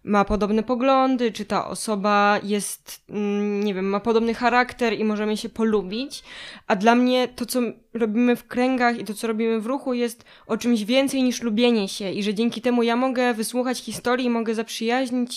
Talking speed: 185 wpm